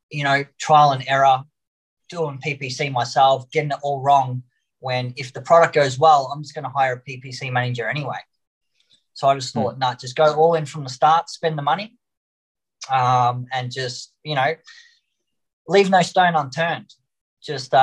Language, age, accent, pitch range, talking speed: Hebrew, 20-39, Australian, 120-150 Hz, 175 wpm